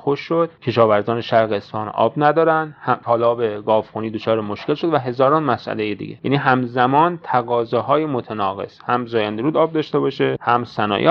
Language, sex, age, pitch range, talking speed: Persian, male, 30-49, 115-155 Hz, 150 wpm